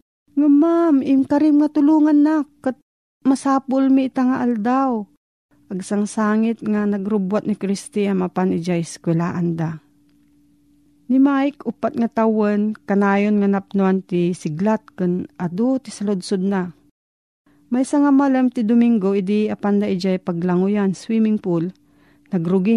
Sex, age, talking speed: female, 40-59, 130 wpm